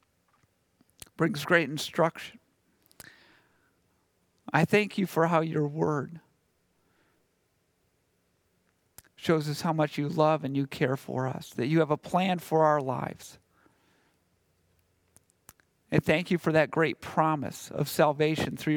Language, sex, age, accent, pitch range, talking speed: English, male, 50-69, American, 140-175 Hz, 125 wpm